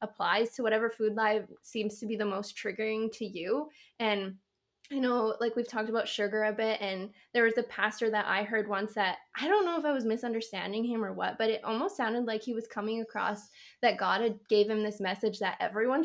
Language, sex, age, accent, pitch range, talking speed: English, female, 10-29, American, 210-255 Hz, 230 wpm